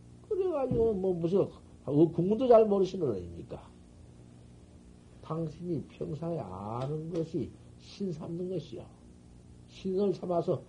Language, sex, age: Korean, male, 50-69